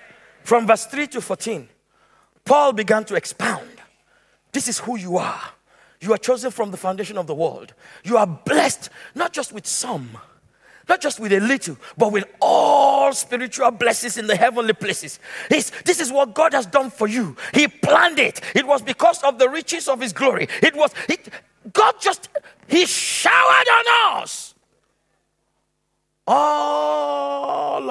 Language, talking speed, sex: English, 160 wpm, male